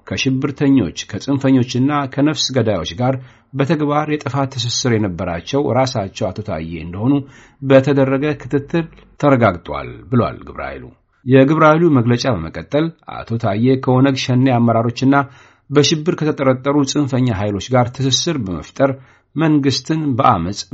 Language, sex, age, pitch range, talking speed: Amharic, male, 60-79, 110-140 Hz, 100 wpm